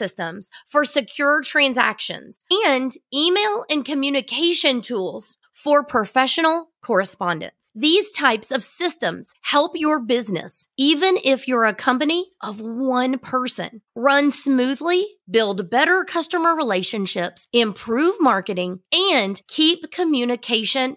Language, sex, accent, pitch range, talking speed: English, female, American, 230-315 Hz, 110 wpm